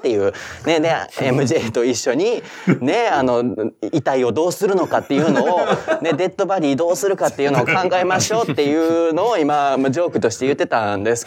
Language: Japanese